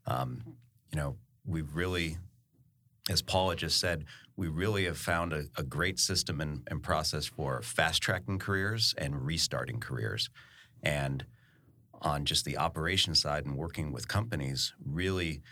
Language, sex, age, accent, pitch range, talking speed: English, male, 40-59, American, 75-105 Hz, 145 wpm